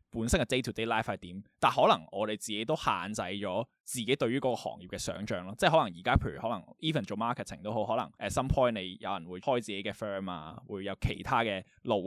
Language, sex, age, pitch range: Chinese, male, 20-39, 95-120 Hz